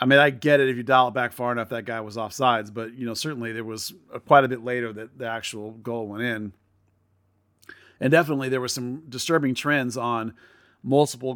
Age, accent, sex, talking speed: 40-59, American, male, 225 wpm